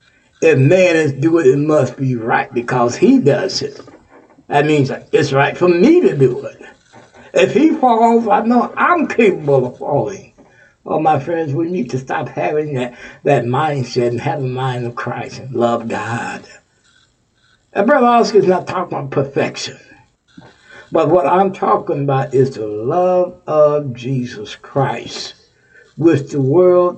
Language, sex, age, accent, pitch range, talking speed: English, male, 60-79, American, 135-185 Hz, 160 wpm